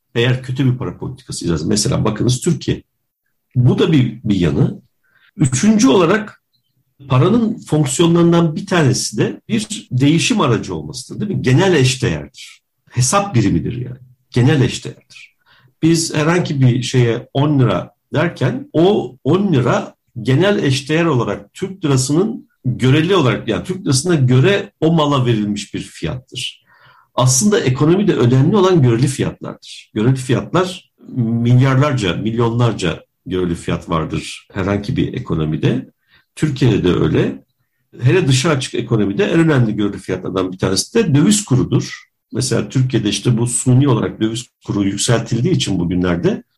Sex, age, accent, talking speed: male, 60-79, native, 130 wpm